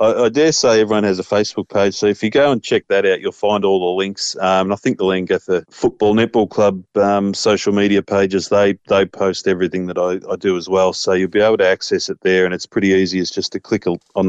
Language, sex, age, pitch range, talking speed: English, male, 30-49, 100-115 Hz, 270 wpm